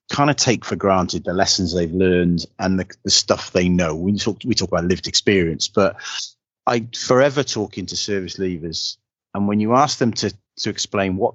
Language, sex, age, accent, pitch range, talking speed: English, male, 30-49, British, 90-115 Hz, 200 wpm